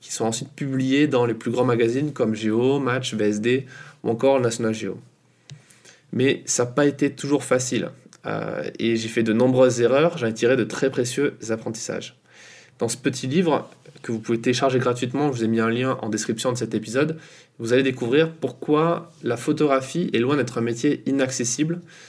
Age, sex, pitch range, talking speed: 20-39, male, 120-145 Hz, 185 wpm